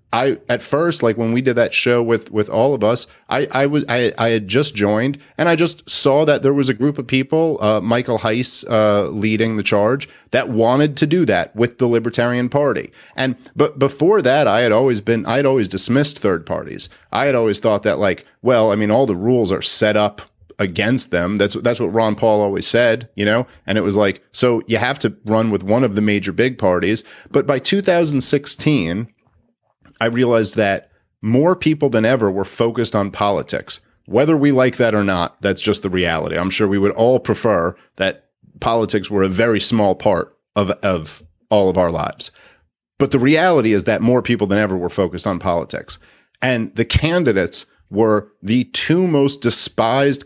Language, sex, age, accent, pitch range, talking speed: English, male, 30-49, American, 105-135 Hz, 200 wpm